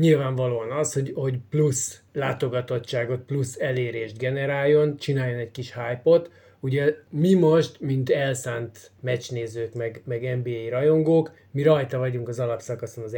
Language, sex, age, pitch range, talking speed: Hungarian, male, 20-39, 115-140 Hz, 130 wpm